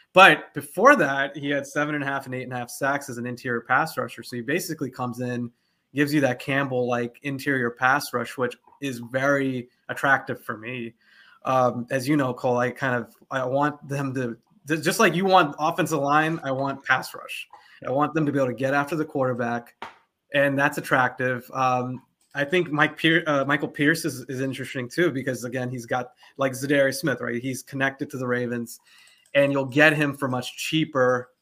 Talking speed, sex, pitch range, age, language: 200 wpm, male, 130-150 Hz, 20-39, English